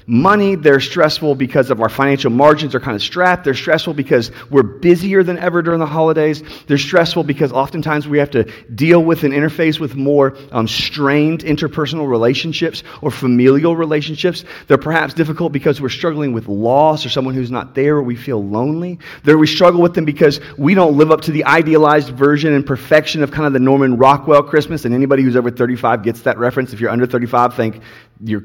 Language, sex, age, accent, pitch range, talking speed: English, male, 30-49, American, 120-160 Hz, 205 wpm